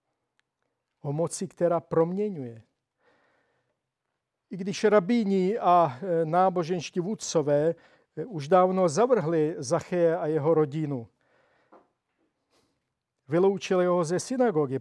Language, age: Czech, 50-69